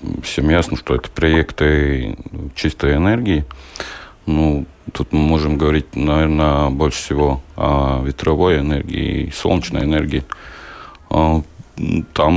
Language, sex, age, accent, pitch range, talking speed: Russian, male, 40-59, native, 70-80 Hz, 100 wpm